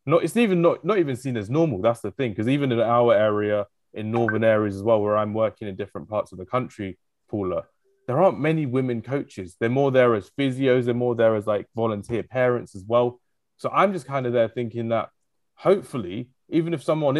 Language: English